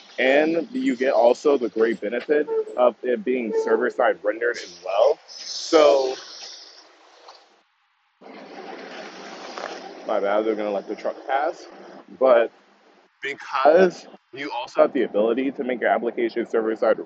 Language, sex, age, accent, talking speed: English, male, 20-39, American, 125 wpm